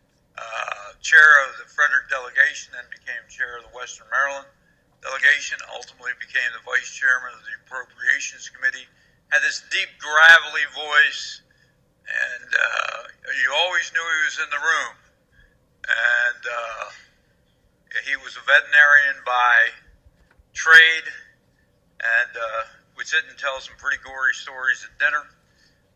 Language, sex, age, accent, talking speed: English, male, 60-79, American, 135 wpm